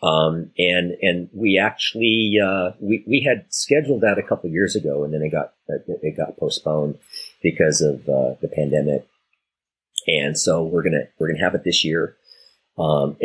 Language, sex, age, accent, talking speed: English, male, 40-59, American, 185 wpm